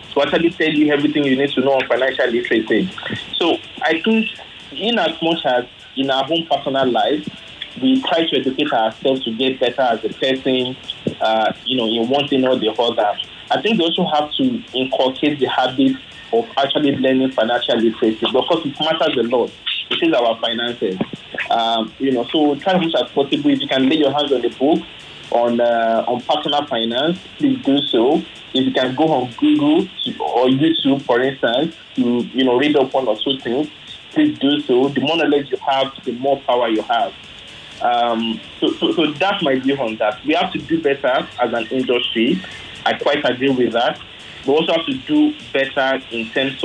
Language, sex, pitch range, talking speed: English, male, 120-150 Hz, 200 wpm